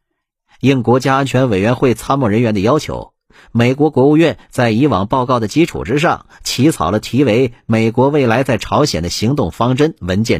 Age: 50-69